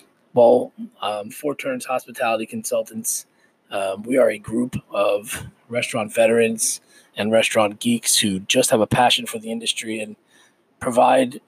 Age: 20-39